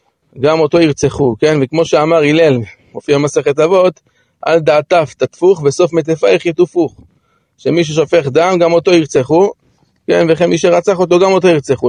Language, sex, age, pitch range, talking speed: Hebrew, male, 30-49, 135-175 Hz, 150 wpm